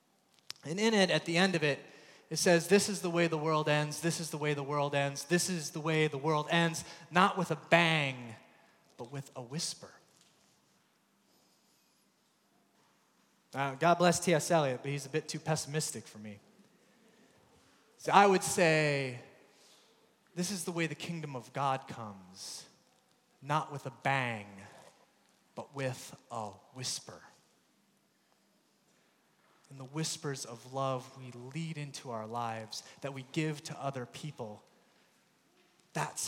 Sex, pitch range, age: male, 130-170 Hz, 30-49